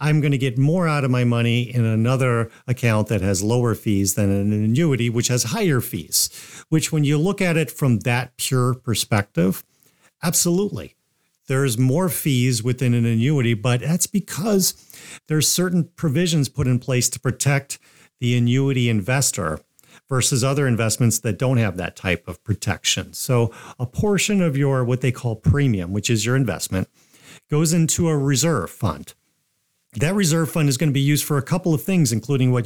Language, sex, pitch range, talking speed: English, male, 115-150 Hz, 180 wpm